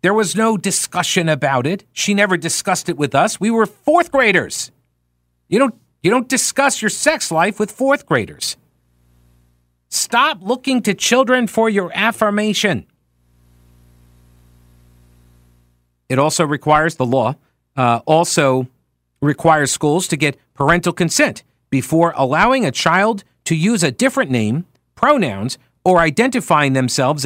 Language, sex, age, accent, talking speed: English, male, 50-69, American, 130 wpm